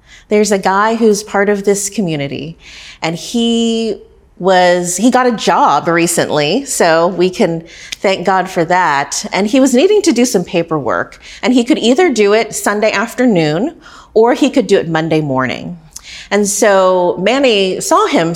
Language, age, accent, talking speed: English, 30-49, American, 165 wpm